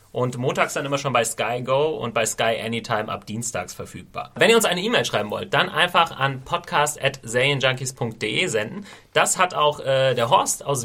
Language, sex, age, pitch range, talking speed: German, male, 30-49, 115-145 Hz, 190 wpm